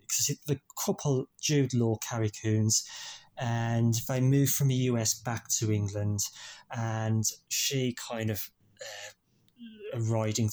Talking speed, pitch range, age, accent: 130 wpm, 110-135 Hz, 20-39, British